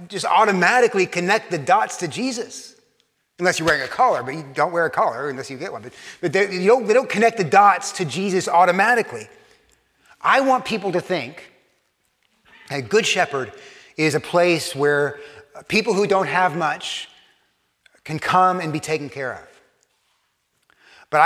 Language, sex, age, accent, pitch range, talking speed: English, male, 30-49, American, 145-195 Hz, 160 wpm